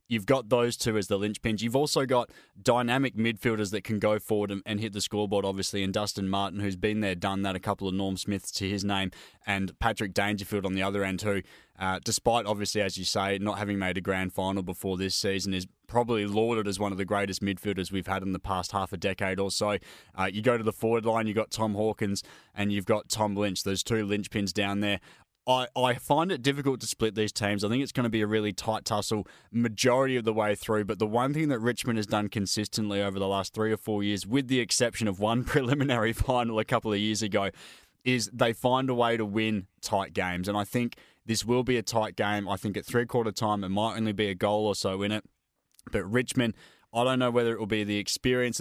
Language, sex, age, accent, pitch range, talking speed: English, male, 20-39, Australian, 100-115 Hz, 240 wpm